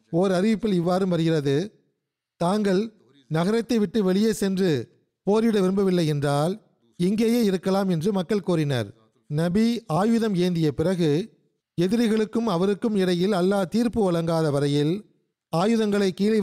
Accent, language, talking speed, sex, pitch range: native, Tamil, 110 wpm, male, 155-200 Hz